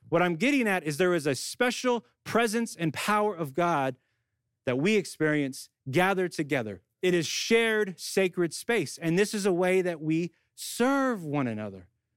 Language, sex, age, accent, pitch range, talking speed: English, male, 30-49, American, 145-220 Hz, 170 wpm